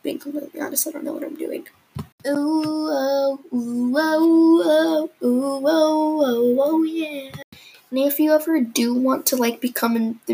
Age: 10-29